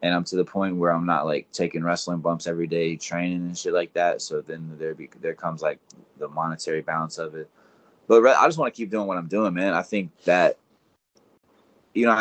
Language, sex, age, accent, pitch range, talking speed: English, male, 20-39, American, 80-90 Hz, 235 wpm